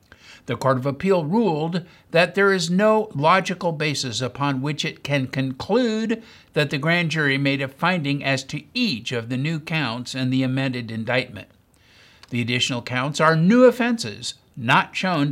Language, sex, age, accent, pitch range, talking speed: English, male, 60-79, American, 130-175 Hz, 165 wpm